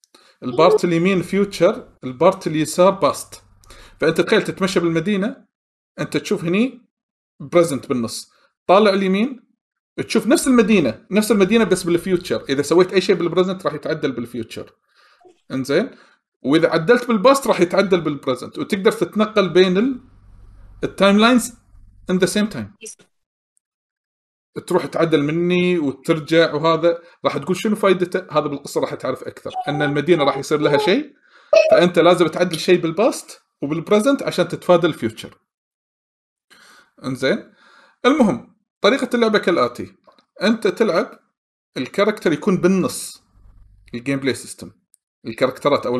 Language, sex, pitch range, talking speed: Arabic, male, 145-210 Hz, 120 wpm